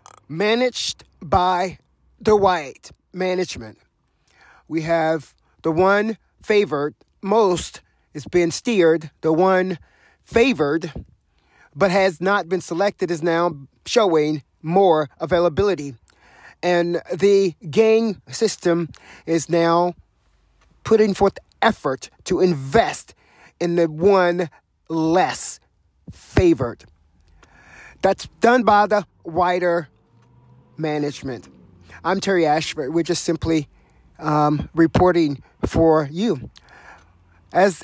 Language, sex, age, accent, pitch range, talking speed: English, male, 30-49, American, 130-185 Hz, 95 wpm